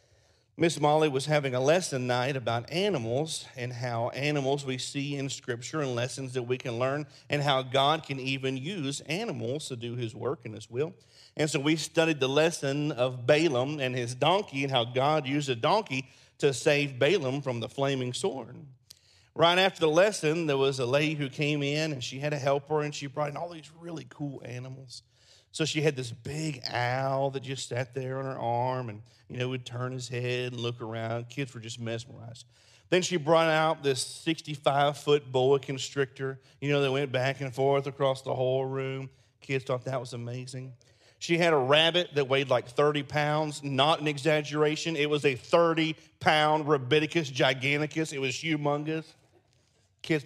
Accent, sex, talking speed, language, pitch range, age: American, male, 190 wpm, English, 125-150 Hz, 40-59